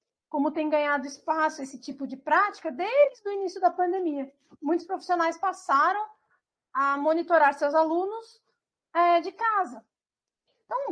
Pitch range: 280-360 Hz